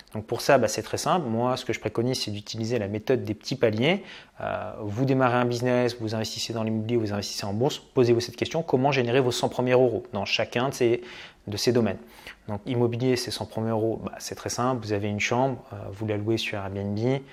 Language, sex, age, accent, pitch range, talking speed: French, male, 20-39, French, 110-135 Hz, 235 wpm